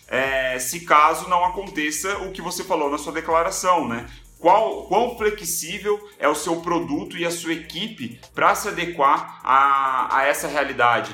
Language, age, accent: Portuguese, 30-49, Brazilian